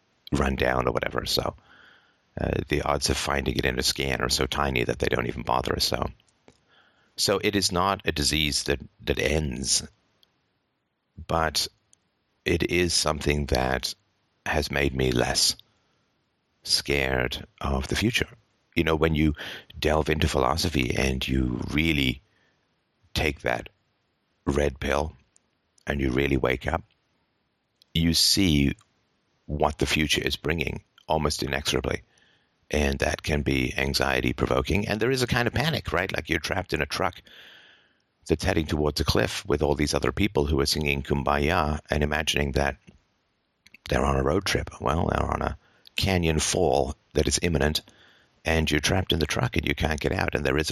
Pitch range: 70-80 Hz